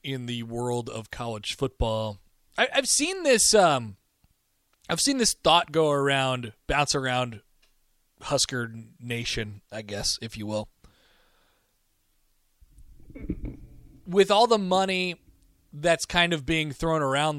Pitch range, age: 110-145 Hz, 20-39